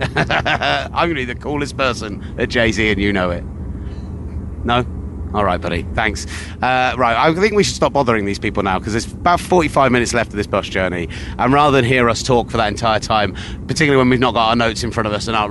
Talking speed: 240 wpm